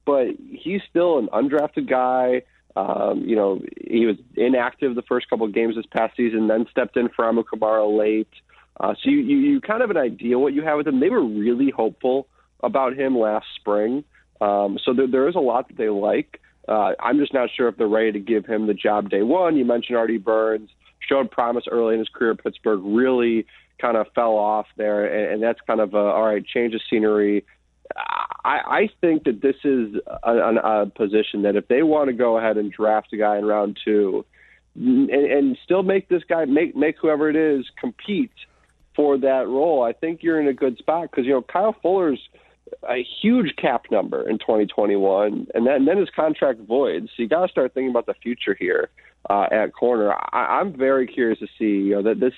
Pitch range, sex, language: 110-145 Hz, male, English